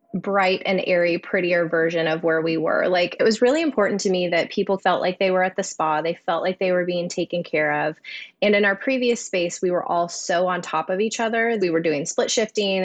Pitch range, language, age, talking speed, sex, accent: 165-195 Hz, English, 20-39, 245 wpm, female, American